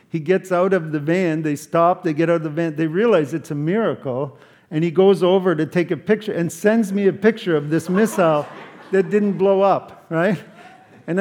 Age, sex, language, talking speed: 50-69, male, English, 220 wpm